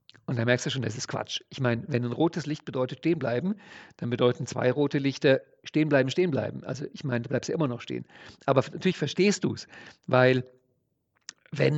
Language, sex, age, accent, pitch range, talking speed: German, male, 50-69, German, 125-165 Hz, 205 wpm